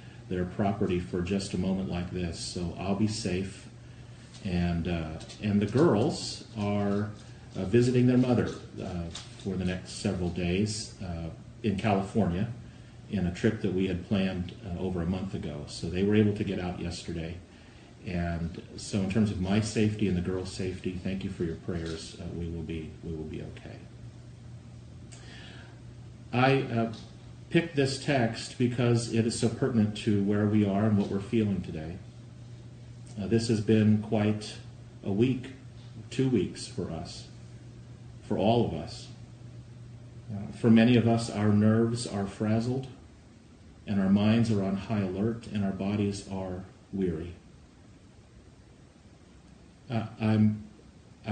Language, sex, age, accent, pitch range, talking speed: English, male, 40-59, American, 95-120 Hz, 150 wpm